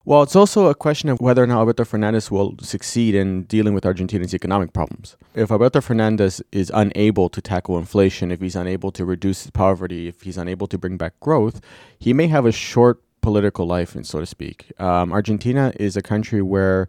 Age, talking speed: 30-49, 200 wpm